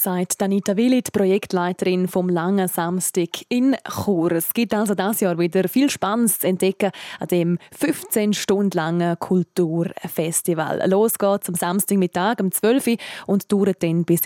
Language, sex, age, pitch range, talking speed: German, female, 20-39, 175-225 Hz, 155 wpm